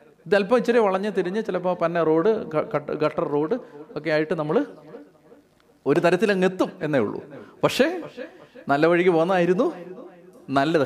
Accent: native